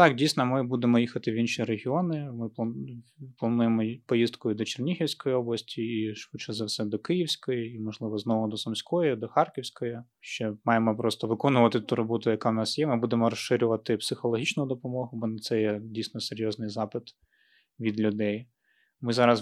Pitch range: 110-125 Hz